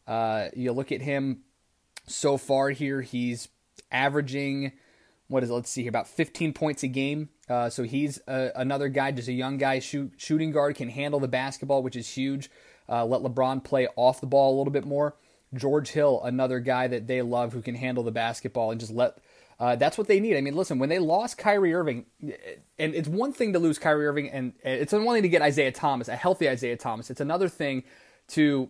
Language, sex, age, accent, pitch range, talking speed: English, male, 20-39, American, 120-145 Hz, 220 wpm